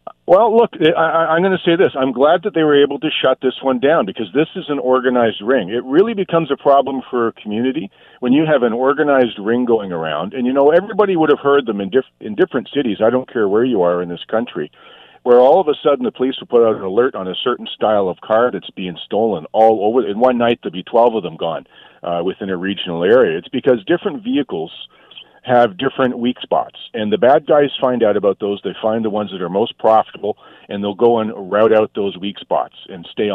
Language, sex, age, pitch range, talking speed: English, male, 50-69, 105-140 Hz, 245 wpm